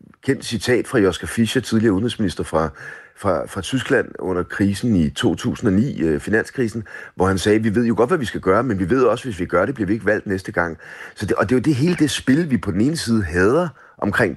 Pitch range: 95-120 Hz